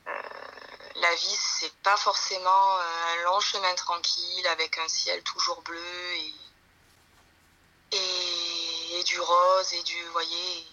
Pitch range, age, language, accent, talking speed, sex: 165-185 Hz, 20-39, French, French, 130 wpm, female